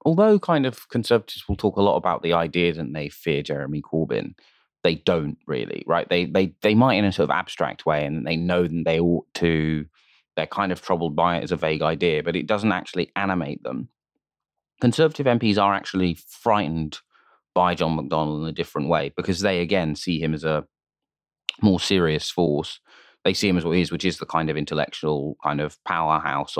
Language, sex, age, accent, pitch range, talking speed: English, male, 20-39, British, 75-95 Hz, 205 wpm